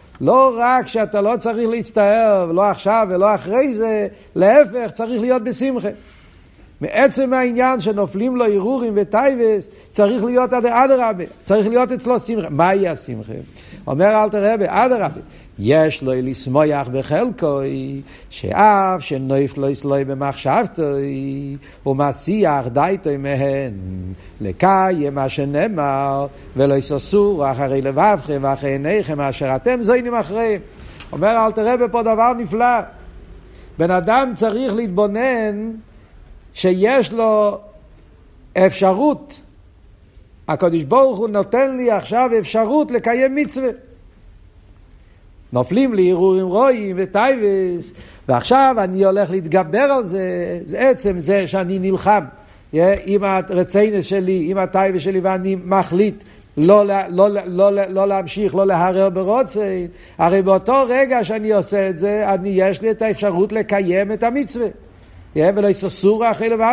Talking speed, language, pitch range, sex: 120 wpm, Hebrew, 145-225 Hz, male